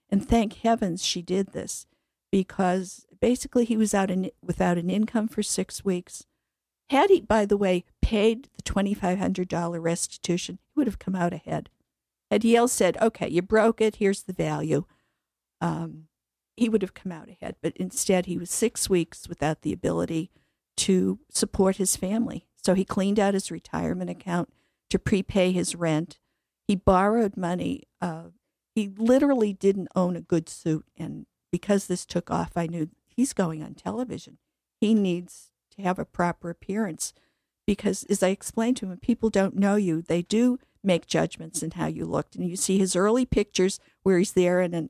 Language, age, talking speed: English, 50-69, 175 wpm